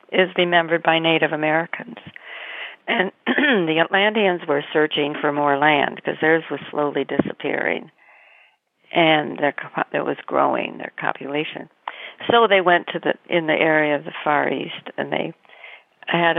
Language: English